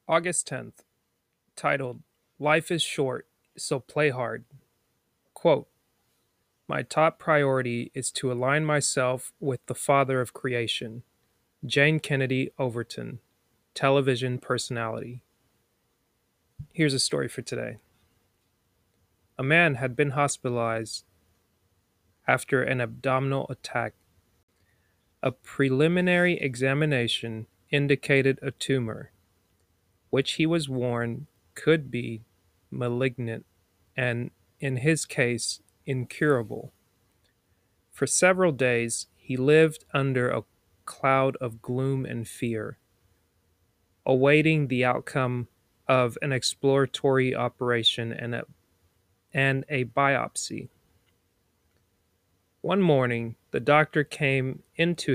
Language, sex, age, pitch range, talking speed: English, male, 30-49, 100-140 Hz, 95 wpm